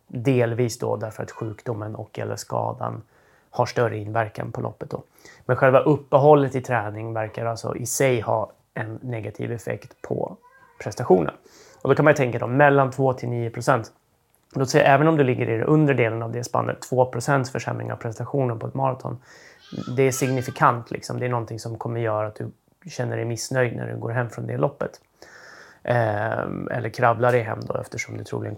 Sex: male